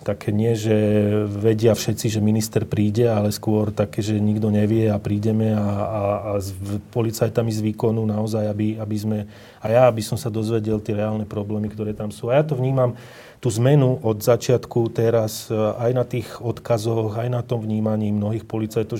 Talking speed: 180 wpm